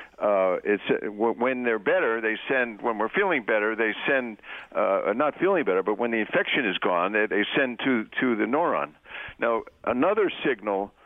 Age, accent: 60-79, American